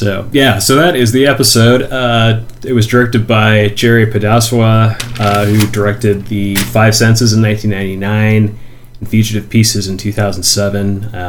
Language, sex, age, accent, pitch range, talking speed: English, male, 30-49, American, 100-120 Hz, 145 wpm